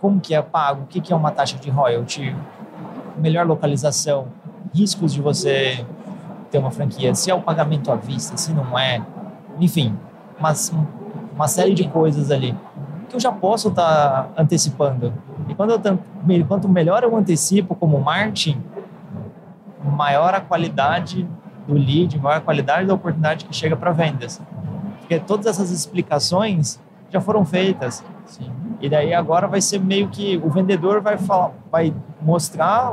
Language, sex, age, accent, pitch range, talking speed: Portuguese, male, 30-49, Brazilian, 150-195 Hz, 155 wpm